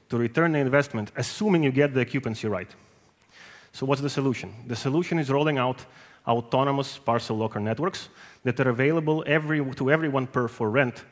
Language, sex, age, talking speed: Ukrainian, male, 30-49, 165 wpm